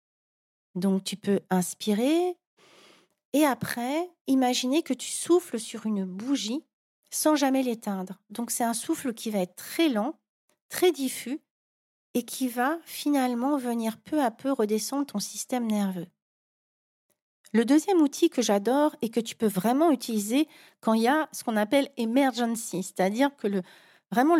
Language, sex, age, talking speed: French, female, 40-59, 155 wpm